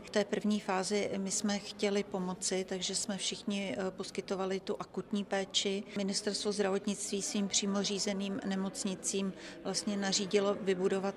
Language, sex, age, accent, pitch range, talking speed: Czech, female, 40-59, native, 190-205 Hz, 125 wpm